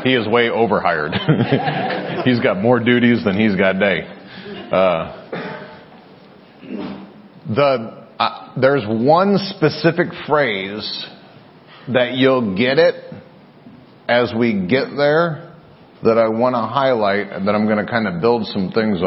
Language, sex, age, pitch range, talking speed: English, male, 40-59, 110-170 Hz, 130 wpm